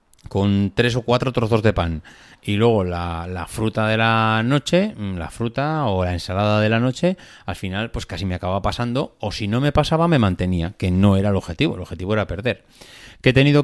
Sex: male